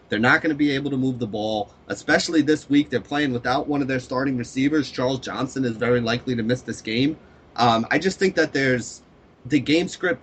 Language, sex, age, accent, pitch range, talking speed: English, male, 30-49, American, 120-135 Hz, 230 wpm